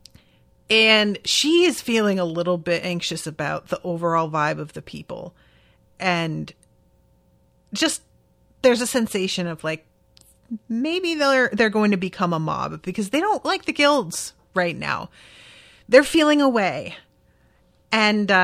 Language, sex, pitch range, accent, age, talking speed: English, female, 175-240 Hz, American, 30-49, 135 wpm